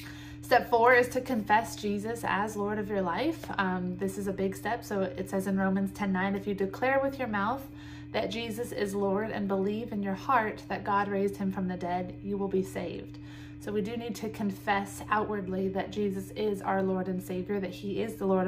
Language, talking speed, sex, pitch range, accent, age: English, 225 wpm, female, 185-210 Hz, American, 20-39